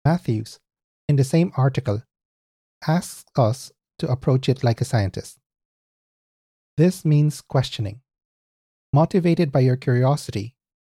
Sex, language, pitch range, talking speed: male, English, 115-150 Hz, 110 wpm